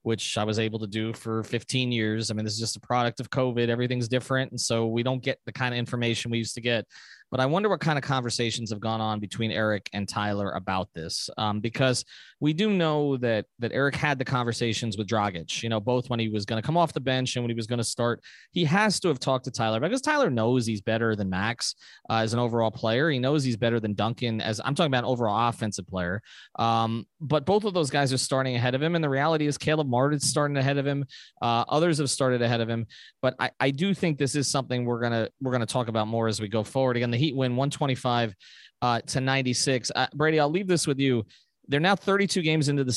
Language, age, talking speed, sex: English, 20-39, 255 wpm, male